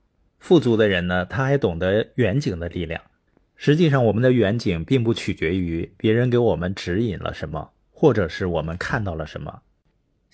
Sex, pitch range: male, 90-125 Hz